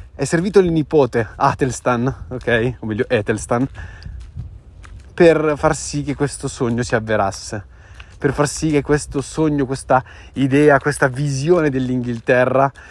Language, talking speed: Italian, 130 wpm